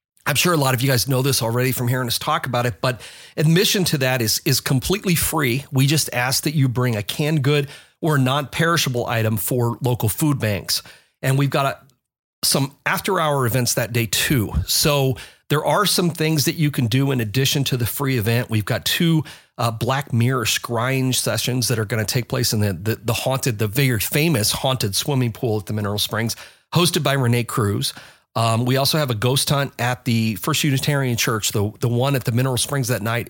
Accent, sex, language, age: American, male, English, 40-59